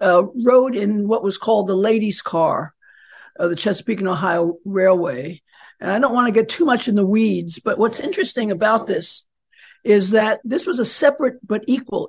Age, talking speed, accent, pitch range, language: 60-79, 200 wpm, American, 200-255 Hz, English